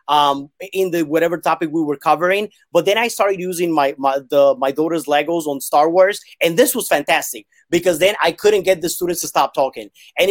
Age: 30-49